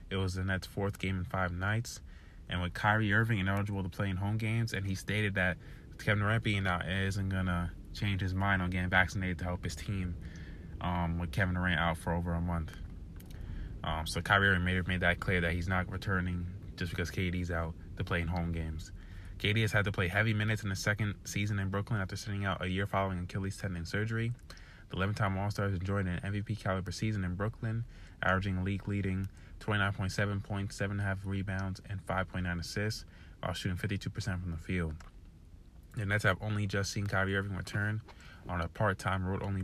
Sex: male